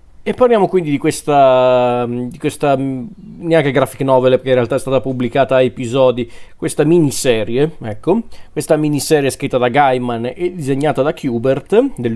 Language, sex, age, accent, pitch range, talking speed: Italian, male, 40-59, native, 125-155 Hz, 155 wpm